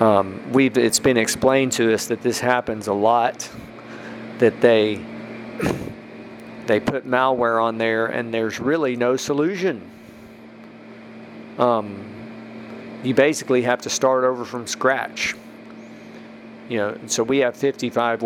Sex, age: male, 40-59